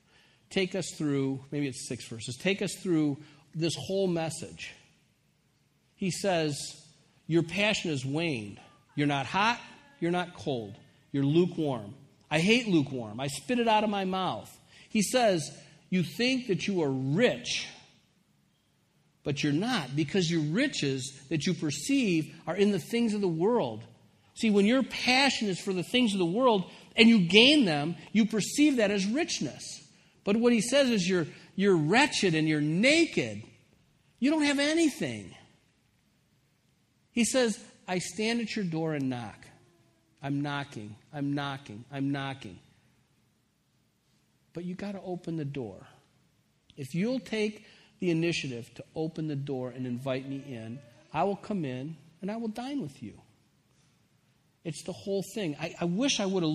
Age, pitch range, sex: 50-69, 140-200 Hz, male